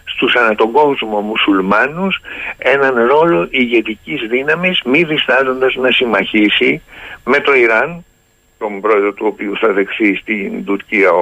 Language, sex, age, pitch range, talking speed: Greek, male, 60-79, 115-165 Hz, 125 wpm